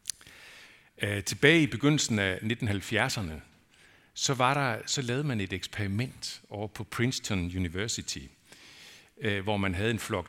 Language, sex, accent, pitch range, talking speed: Danish, male, native, 95-125 Hz, 115 wpm